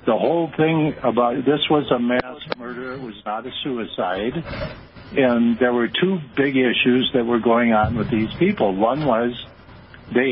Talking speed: 175 wpm